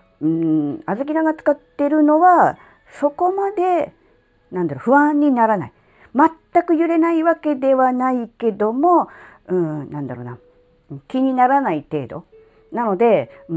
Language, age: Japanese, 40-59